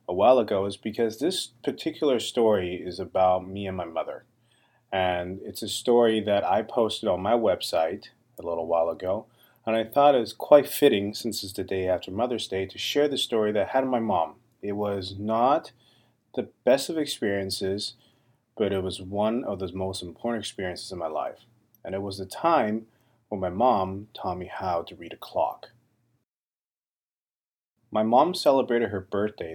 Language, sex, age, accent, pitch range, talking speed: English, male, 30-49, American, 100-125 Hz, 185 wpm